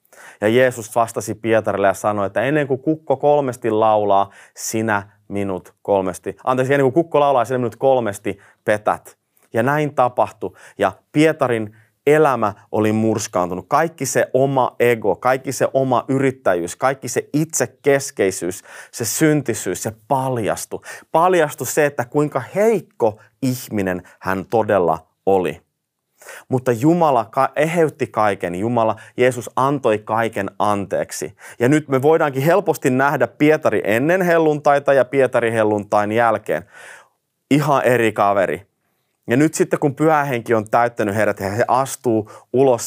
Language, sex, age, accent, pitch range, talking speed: Finnish, male, 30-49, native, 105-140 Hz, 130 wpm